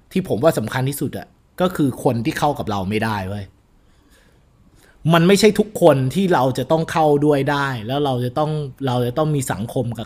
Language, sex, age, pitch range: Thai, male, 20-39, 130-170 Hz